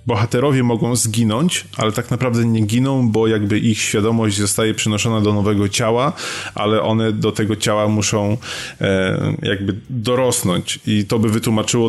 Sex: male